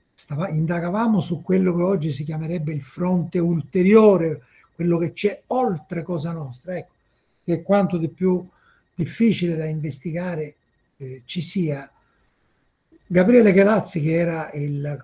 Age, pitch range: 60-79, 155-195 Hz